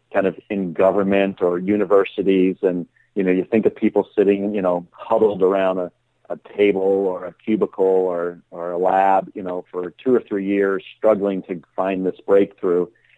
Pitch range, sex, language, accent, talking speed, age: 90-105 Hz, male, English, American, 180 wpm, 40-59